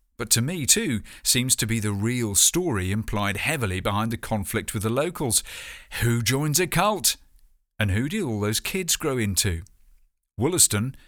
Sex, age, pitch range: male, 40-59, 105-140 Hz